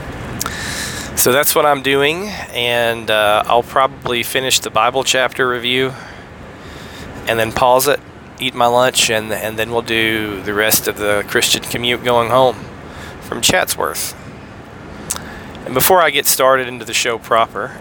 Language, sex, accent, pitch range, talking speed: English, male, American, 110-130 Hz, 150 wpm